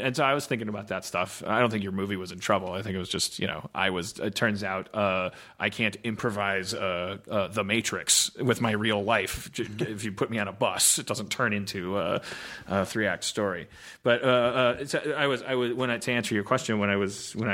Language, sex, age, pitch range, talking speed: English, male, 30-49, 100-125 Hz, 255 wpm